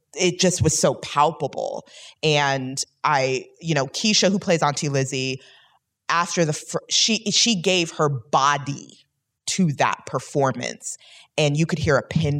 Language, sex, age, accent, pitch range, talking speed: English, female, 20-39, American, 130-165 Hz, 145 wpm